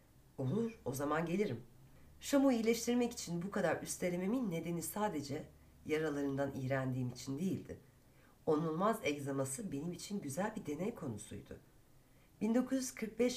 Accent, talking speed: native, 110 wpm